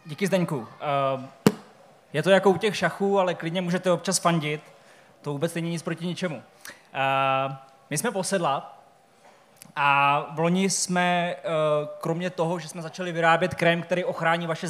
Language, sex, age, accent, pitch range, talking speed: Czech, male, 20-39, native, 155-180 Hz, 145 wpm